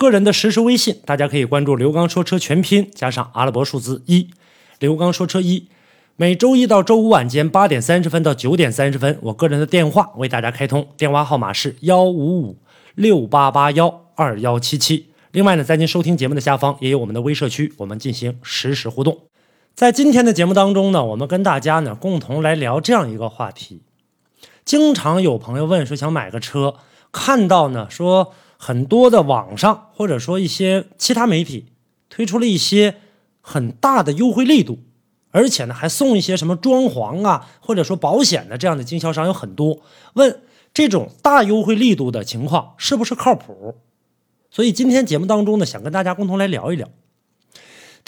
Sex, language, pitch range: male, Chinese, 140-210 Hz